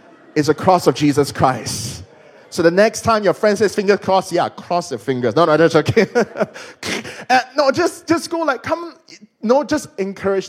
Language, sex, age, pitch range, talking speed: English, male, 20-39, 155-230 Hz, 185 wpm